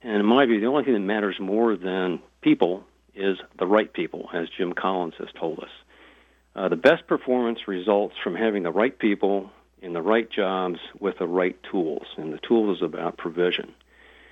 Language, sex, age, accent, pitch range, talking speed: English, male, 50-69, American, 90-115 Hz, 195 wpm